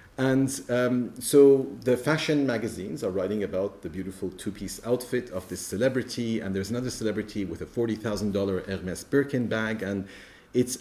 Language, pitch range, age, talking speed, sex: English, 100-125 Hz, 40-59, 155 wpm, male